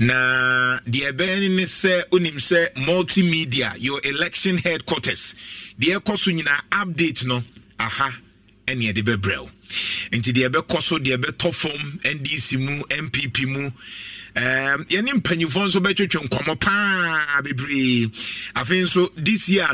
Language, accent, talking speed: English, Nigerian, 135 wpm